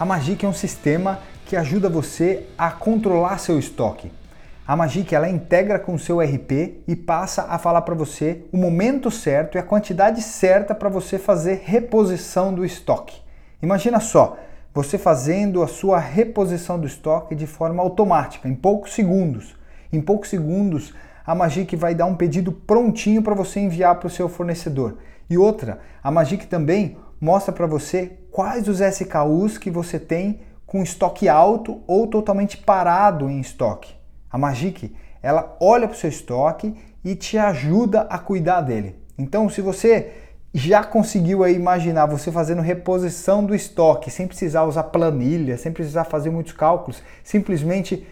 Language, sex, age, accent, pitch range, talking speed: Portuguese, male, 30-49, Brazilian, 160-195 Hz, 160 wpm